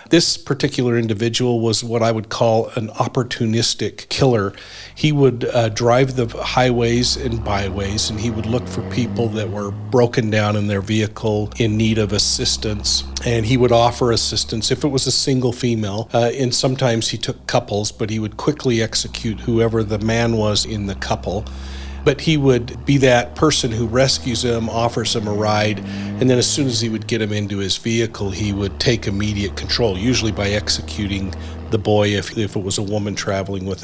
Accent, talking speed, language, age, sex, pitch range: American, 190 wpm, English, 50-69, male, 100-120 Hz